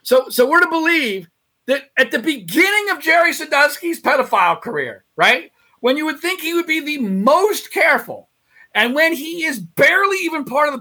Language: English